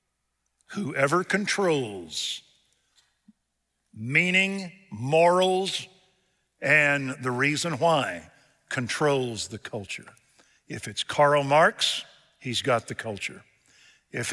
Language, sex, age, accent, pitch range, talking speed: English, male, 50-69, American, 125-170 Hz, 85 wpm